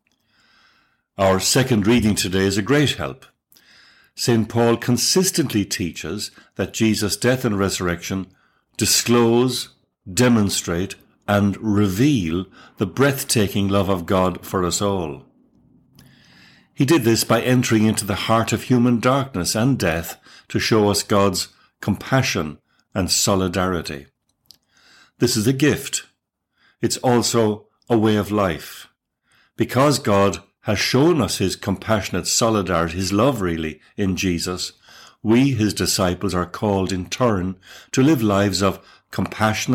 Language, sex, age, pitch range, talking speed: English, male, 60-79, 95-120 Hz, 125 wpm